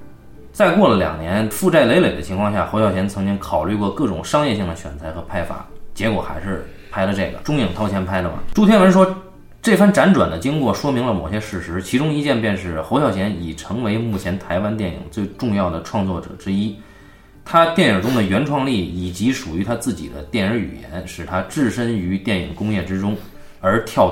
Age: 20-39